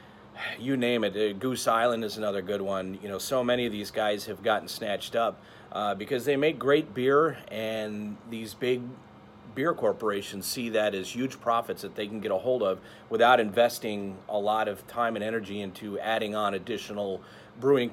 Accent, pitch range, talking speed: American, 105-125 Hz, 185 wpm